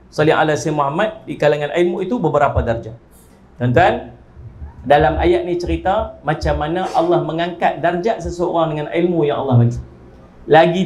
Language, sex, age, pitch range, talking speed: Malay, male, 50-69, 115-175 Hz, 150 wpm